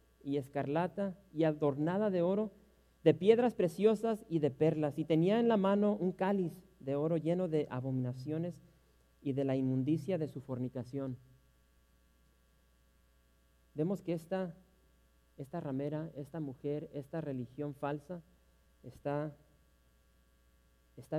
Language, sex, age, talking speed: English, male, 40-59, 120 wpm